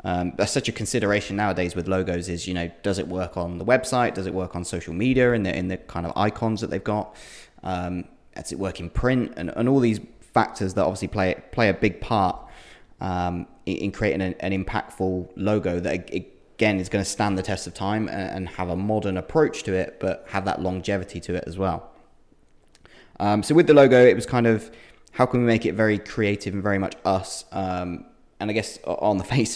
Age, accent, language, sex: 20-39, British, English, male